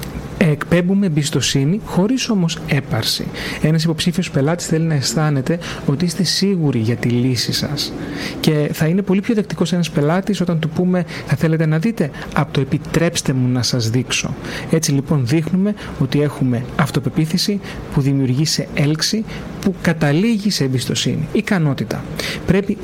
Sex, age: male, 30-49